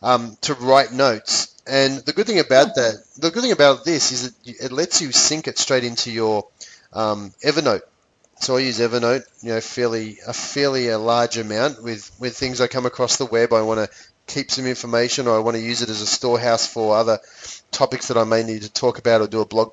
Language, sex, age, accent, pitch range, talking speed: English, male, 30-49, Australian, 115-130 Hz, 230 wpm